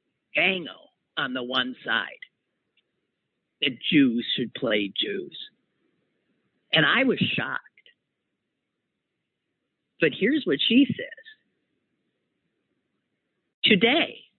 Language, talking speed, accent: English, 85 wpm, American